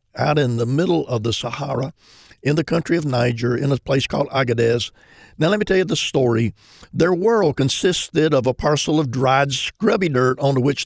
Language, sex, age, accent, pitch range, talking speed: English, male, 50-69, American, 130-160 Hz, 200 wpm